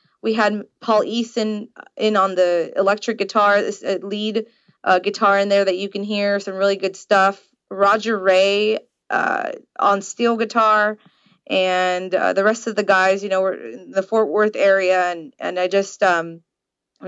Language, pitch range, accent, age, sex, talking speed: English, 185-215 Hz, American, 20-39, female, 175 wpm